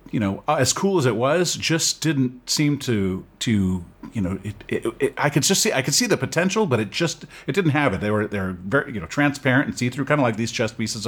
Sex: male